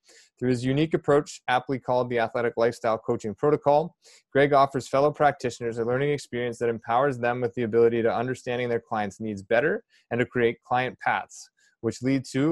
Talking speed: 180 wpm